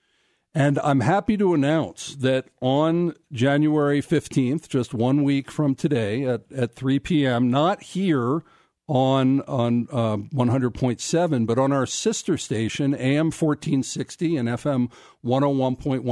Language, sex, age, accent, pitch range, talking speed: English, male, 50-69, American, 125-160 Hz, 115 wpm